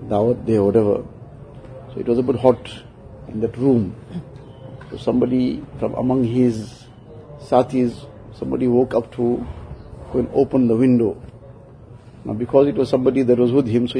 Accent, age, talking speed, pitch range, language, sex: Indian, 50-69, 150 wpm, 120-135 Hz, English, male